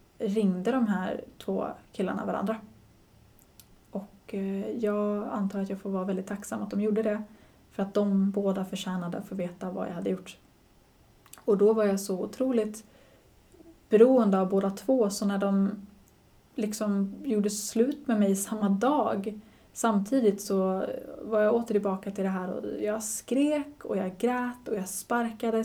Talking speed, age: 160 wpm, 20-39